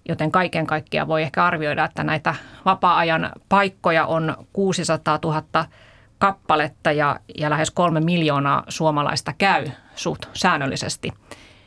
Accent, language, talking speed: native, Finnish, 115 wpm